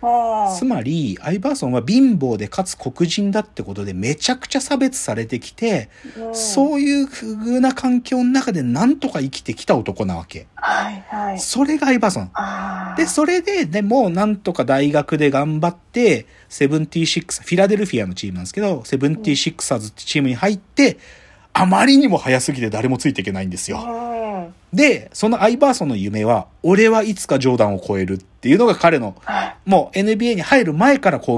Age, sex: 40-59, male